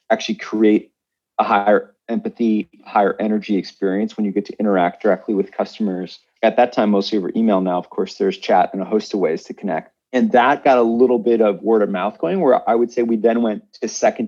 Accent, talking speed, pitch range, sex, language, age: American, 225 wpm, 105-120 Hz, male, English, 40-59